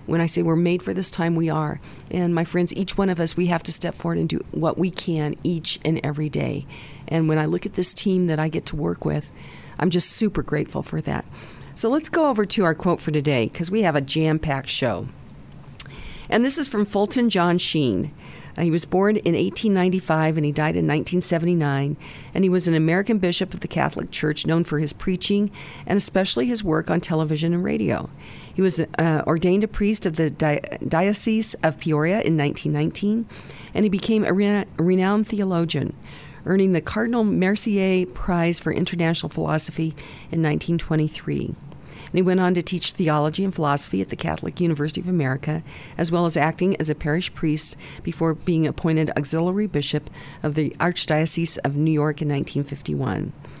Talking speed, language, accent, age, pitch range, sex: 190 wpm, English, American, 50-69, 155-185 Hz, female